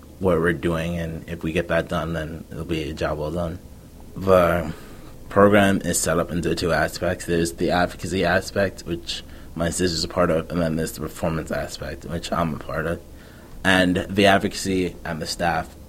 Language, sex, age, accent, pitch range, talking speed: English, male, 20-39, American, 80-90 Hz, 195 wpm